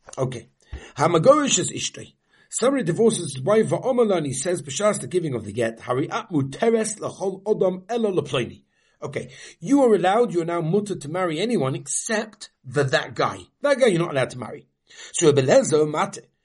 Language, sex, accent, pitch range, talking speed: English, male, British, 140-215 Hz, 165 wpm